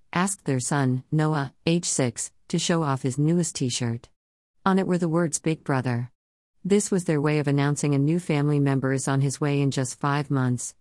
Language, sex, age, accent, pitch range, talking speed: English, female, 50-69, American, 130-155 Hz, 205 wpm